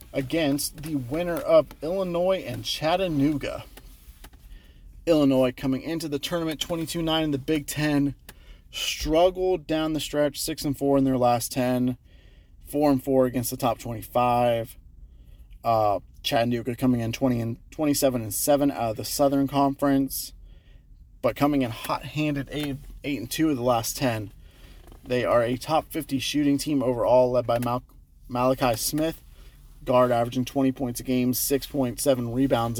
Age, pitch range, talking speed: 30-49, 115-140 Hz, 155 wpm